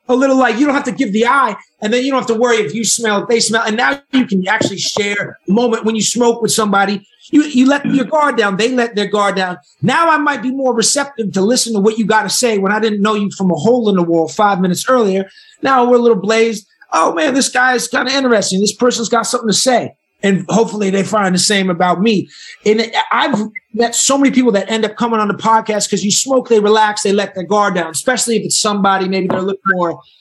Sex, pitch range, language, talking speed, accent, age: male, 190-240 Hz, English, 265 wpm, American, 30-49